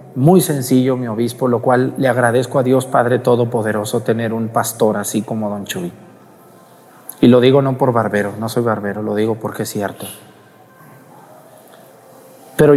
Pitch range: 125-190 Hz